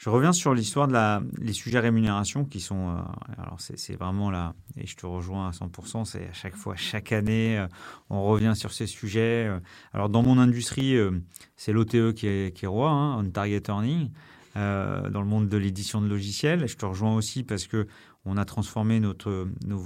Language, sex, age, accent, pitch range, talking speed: French, male, 30-49, French, 100-120 Hz, 205 wpm